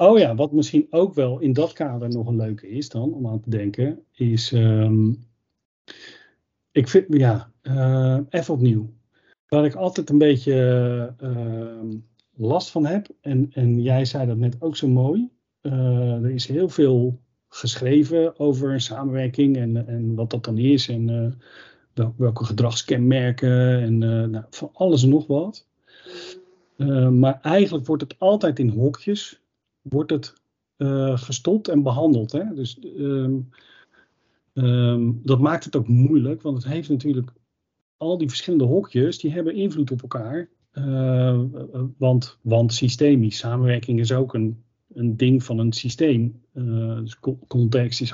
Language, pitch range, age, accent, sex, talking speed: Dutch, 120-145 Hz, 50-69, Dutch, male, 150 wpm